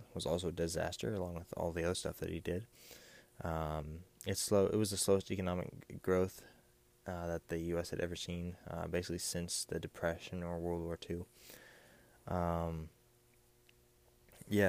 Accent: American